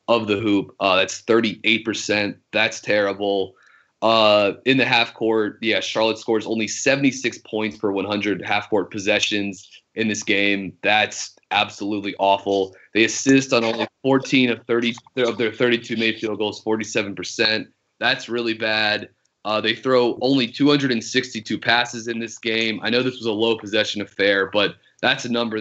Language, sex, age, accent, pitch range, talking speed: English, male, 30-49, American, 105-120 Hz, 160 wpm